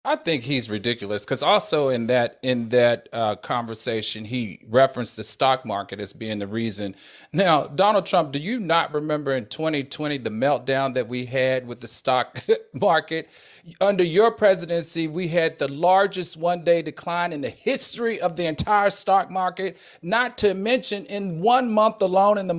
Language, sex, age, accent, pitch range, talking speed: English, male, 40-59, American, 160-215 Hz, 175 wpm